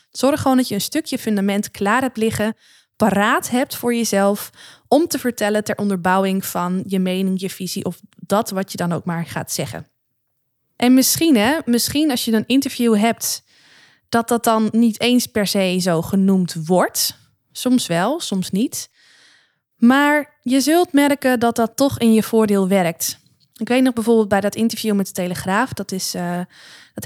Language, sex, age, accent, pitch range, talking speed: Dutch, female, 20-39, Dutch, 195-245 Hz, 175 wpm